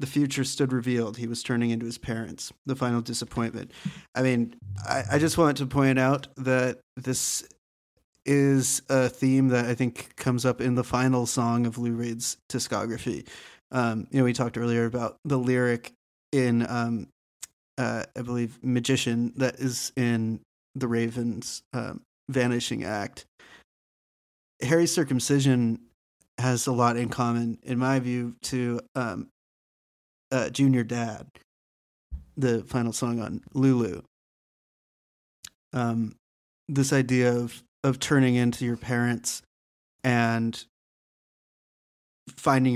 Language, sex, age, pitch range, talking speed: English, male, 30-49, 115-130 Hz, 130 wpm